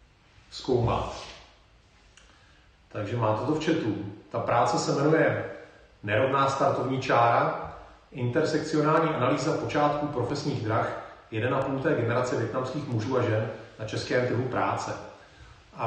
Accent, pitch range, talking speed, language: native, 115-135 Hz, 110 wpm, Czech